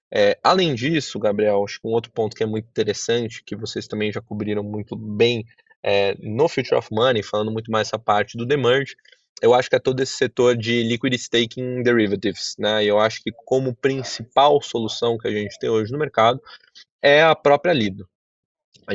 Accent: Brazilian